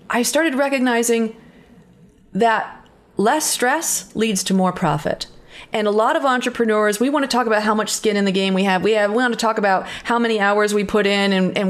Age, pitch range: 30-49, 185-250 Hz